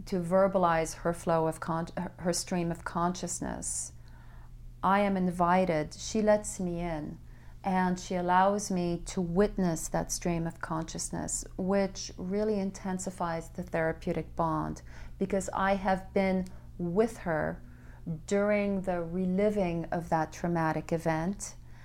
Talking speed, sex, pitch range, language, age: 125 wpm, female, 170-205 Hz, English, 40-59